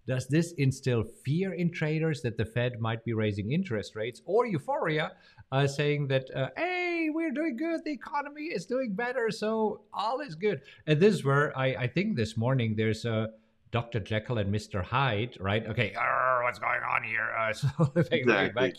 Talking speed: 190 wpm